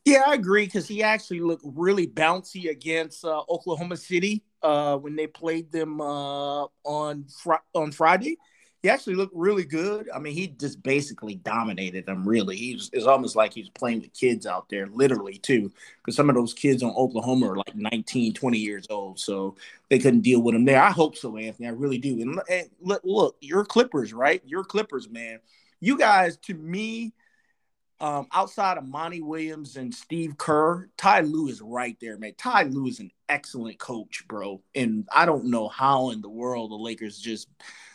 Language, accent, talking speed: English, American, 190 wpm